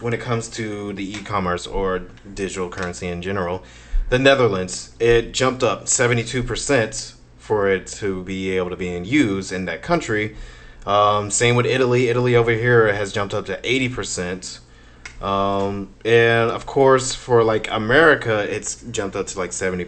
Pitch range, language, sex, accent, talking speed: 95-115 Hz, English, male, American, 170 wpm